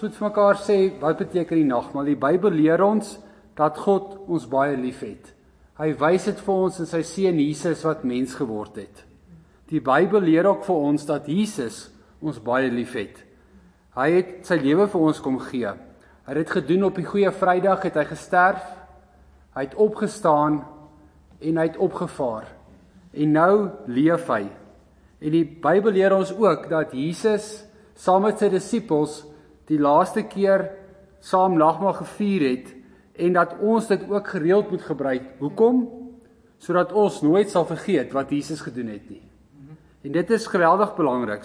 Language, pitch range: English, 150-205 Hz